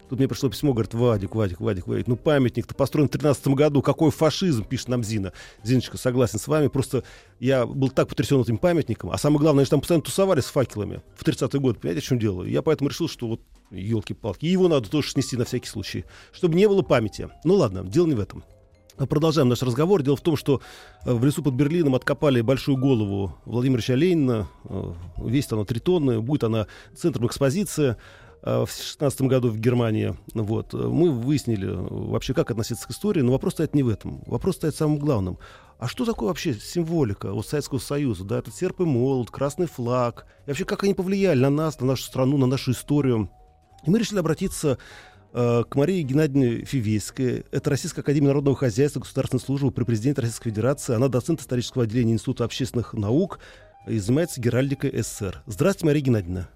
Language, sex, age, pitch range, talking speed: Russian, male, 40-59, 115-145 Hz, 190 wpm